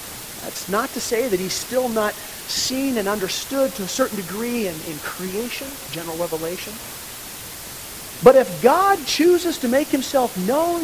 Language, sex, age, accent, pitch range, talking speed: English, male, 40-59, American, 230-310 Hz, 155 wpm